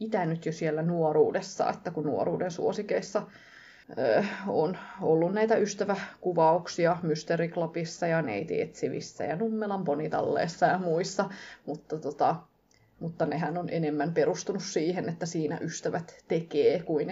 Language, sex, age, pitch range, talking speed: English, female, 20-39, 170-235 Hz, 120 wpm